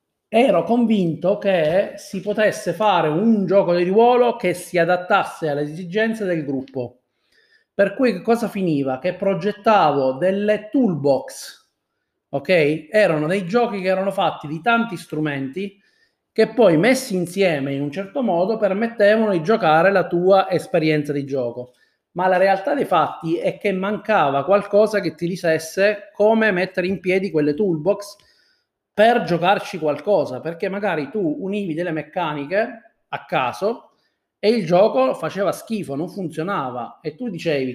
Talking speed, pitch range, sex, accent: 145 wpm, 160-215 Hz, male, native